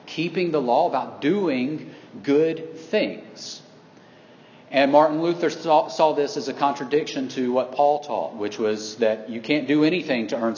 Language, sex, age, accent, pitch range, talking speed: English, male, 40-59, American, 125-165 Hz, 165 wpm